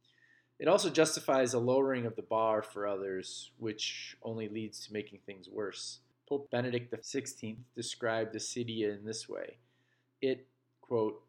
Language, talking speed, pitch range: English, 145 wpm, 110-130 Hz